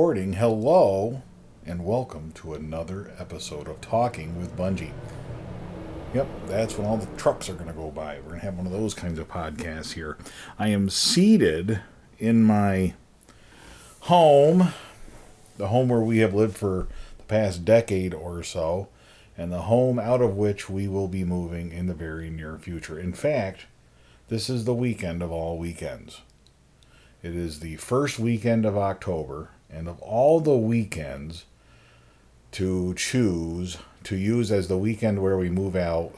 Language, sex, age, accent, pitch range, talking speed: English, male, 40-59, American, 85-110 Hz, 160 wpm